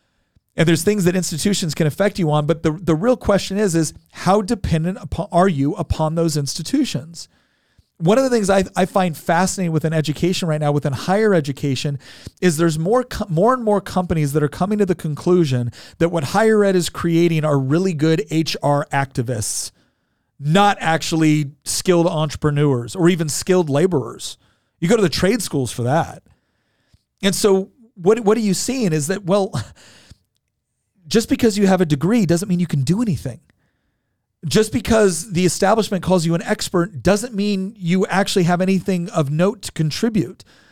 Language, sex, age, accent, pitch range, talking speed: English, male, 40-59, American, 160-205 Hz, 180 wpm